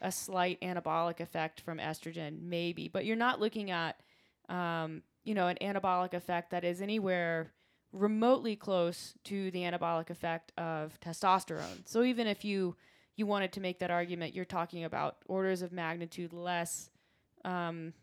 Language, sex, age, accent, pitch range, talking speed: English, female, 20-39, American, 170-195 Hz, 155 wpm